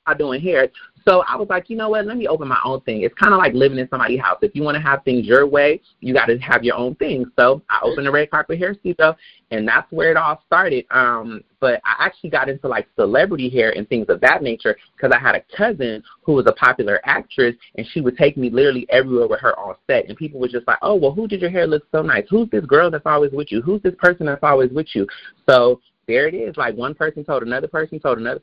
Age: 30-49